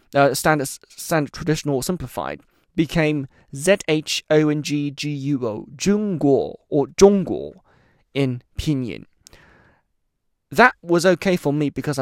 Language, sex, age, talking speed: English, male, 20-39, 95 wpm